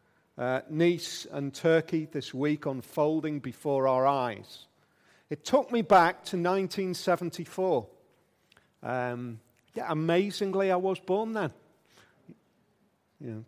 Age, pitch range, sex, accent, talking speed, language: 40-59, 130-180 Hz, male, British, 105 wpm, English